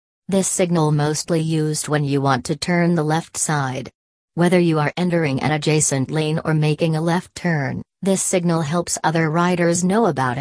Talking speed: 180 wpm